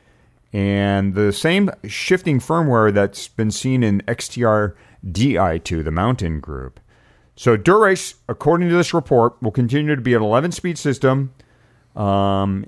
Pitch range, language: 100-130 Hz, English